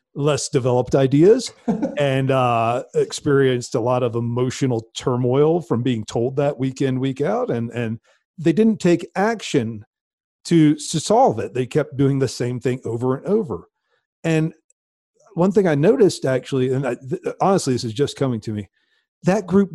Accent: American